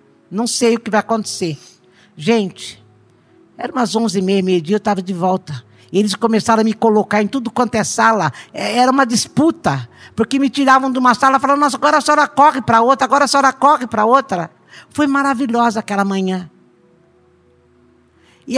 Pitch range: 190-255 Hz